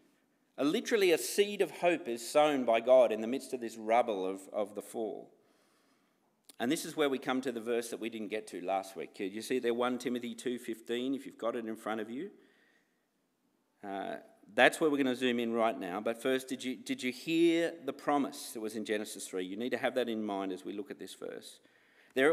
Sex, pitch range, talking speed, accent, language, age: male, 115-150 Hz, 230 wpm, Australian, English, 50-69